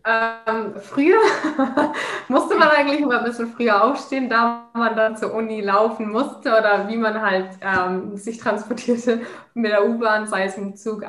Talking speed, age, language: 170 wpm, 20-39, German